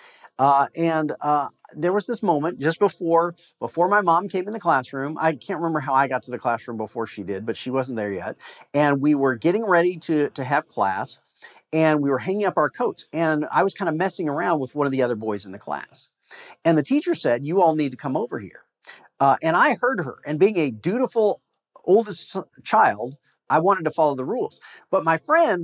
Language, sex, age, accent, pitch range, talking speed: English, male, 40-59, American, 135-200 Hz, 225 wpm